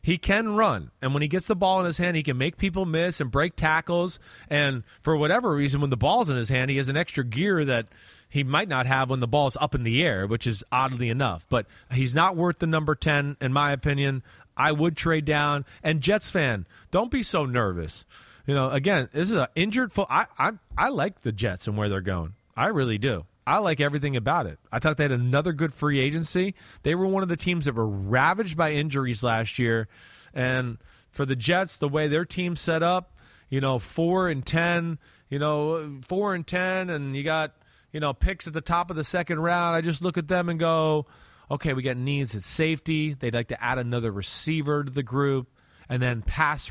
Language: English